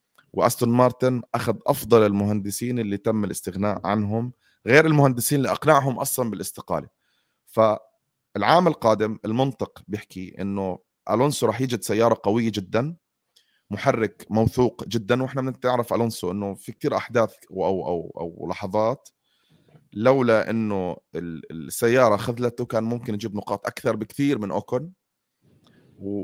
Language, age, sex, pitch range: Arabic, 30-49, male, 100-120 Hz